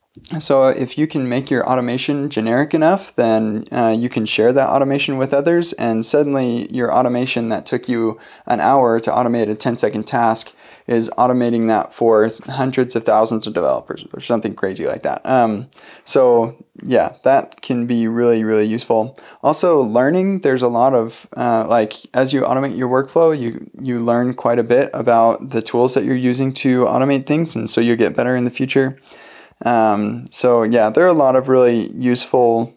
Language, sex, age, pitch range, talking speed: English, male, 20-39, 115-130 Hz, 185 wpm